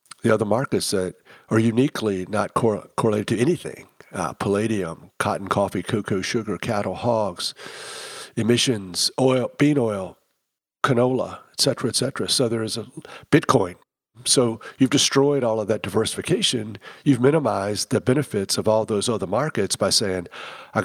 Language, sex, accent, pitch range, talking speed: English, male, American, 95-125 Hz, 145 wpm